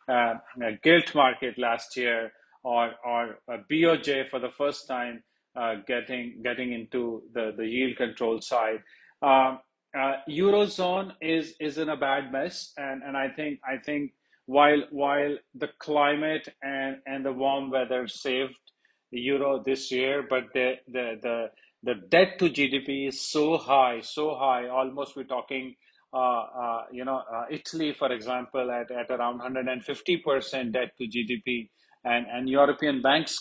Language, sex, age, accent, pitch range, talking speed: English, male, 30-49, Indian, 125-145 Hz, 160 wpm